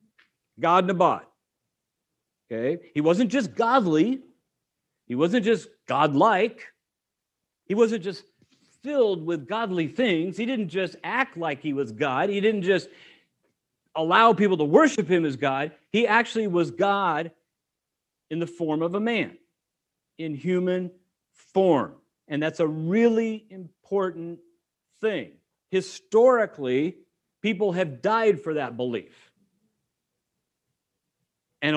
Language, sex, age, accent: English, male, 50-69, American